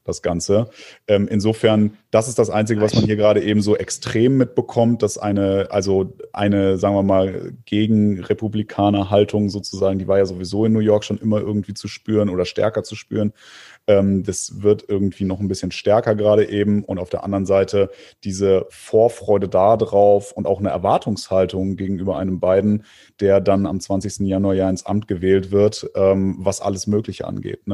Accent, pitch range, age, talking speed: German, 100-105 Hz, 30-49, 175 wpm